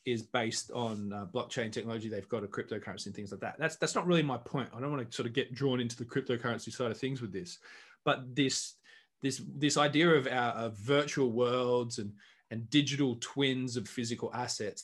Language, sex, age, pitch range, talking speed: English, male, 20-39, 120-145 Hz, 215 wpm